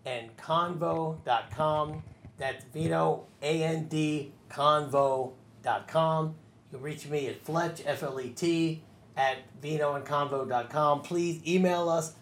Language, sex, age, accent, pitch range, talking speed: English, male, 30-49, American, 135-175 Hz, 100 wpm